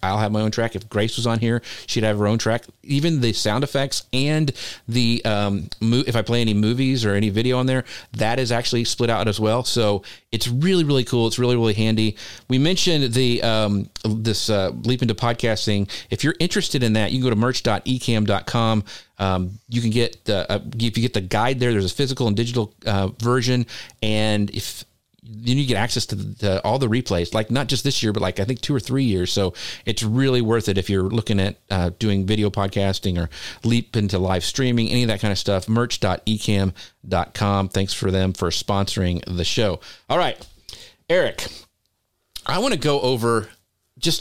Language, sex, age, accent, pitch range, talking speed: English, male, 40-59, American, 100-125 Hz, 205 wpm